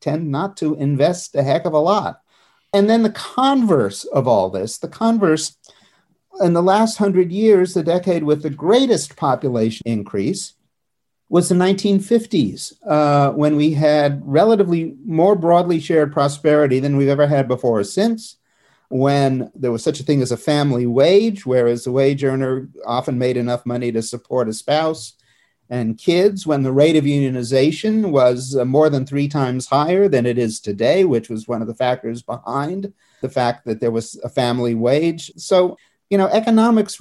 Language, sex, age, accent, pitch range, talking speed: English, male, 50-69, American, 125-175 Hz, 175 wpm